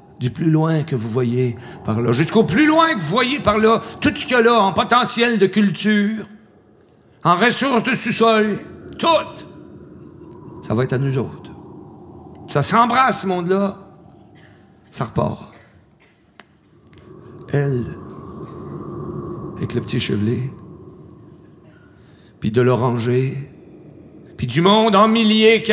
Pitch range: 165-225 Hz